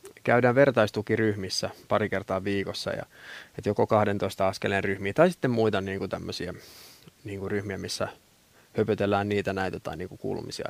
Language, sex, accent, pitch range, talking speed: Finnish, male, native, 100-120 Hz, 120 wpm